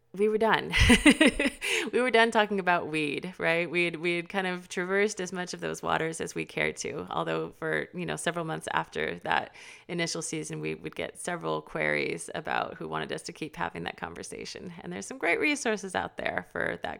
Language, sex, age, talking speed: English, female, 30-49, 210 wpm